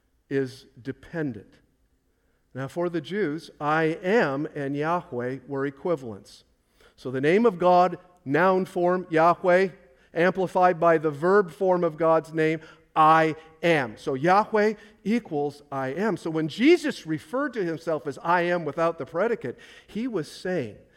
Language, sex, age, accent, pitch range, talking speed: English, male, 50-69, American, 140-175 Hz, 145 wpm